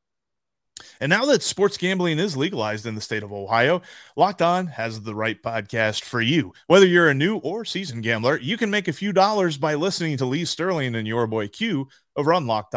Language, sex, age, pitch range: English, male, 30-49, 120-175 Hz